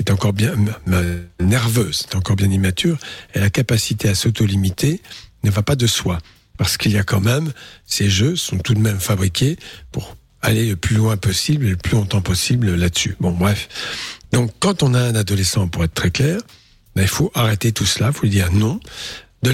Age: 60-79